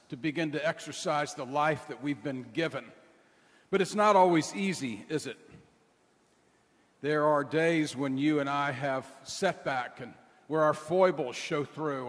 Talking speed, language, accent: 160 wpm, English, American